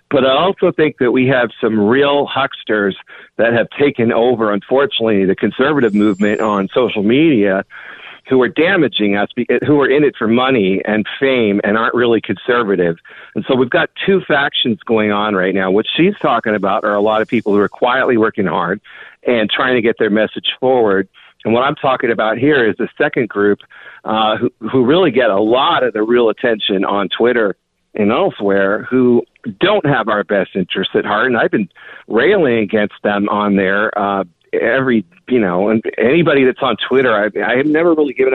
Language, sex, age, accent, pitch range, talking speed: English, male, 50-69, American, 100-130 Hz, 195 wpm